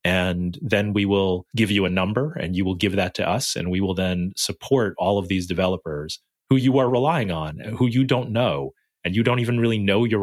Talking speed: 235 wpm